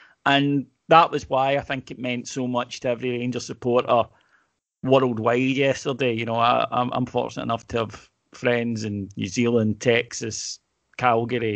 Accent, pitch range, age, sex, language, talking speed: British, 115-135 Hz, 30-49, male, English, 155 wpm